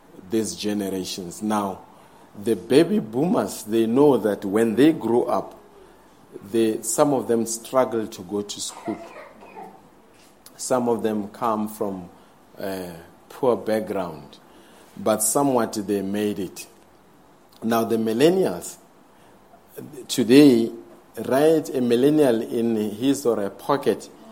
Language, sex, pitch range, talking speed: English, male, 115-140 Hz, 115 wpm